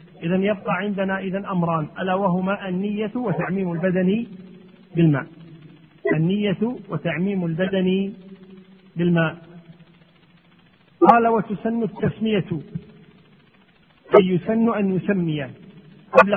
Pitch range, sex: 180-205 Hz, male